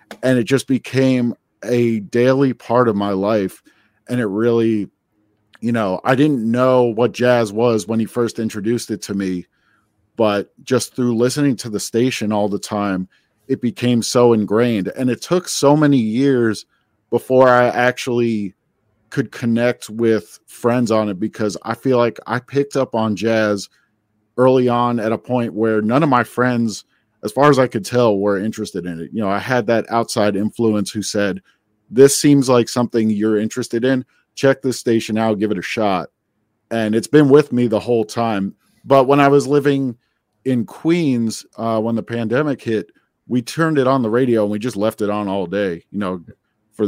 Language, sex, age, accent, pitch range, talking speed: English, male, 40-59, American, 105-125 Hz, 190 wpm